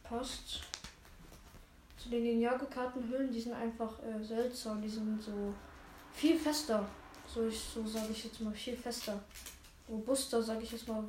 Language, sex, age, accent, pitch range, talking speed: German, female, 10-29, German, 180-240 Hz, 155 wpm